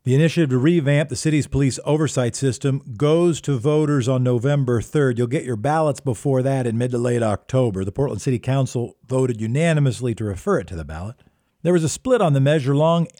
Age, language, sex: 50-69, English, male